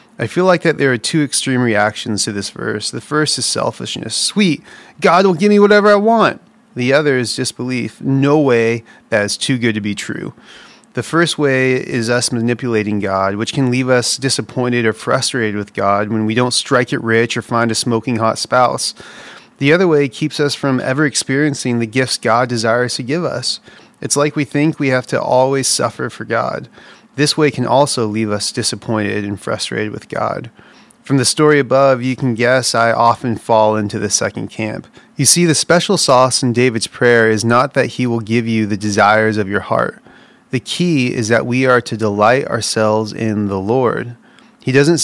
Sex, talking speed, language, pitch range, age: male, 200 wpm, English, 110-135 Hz, 30-49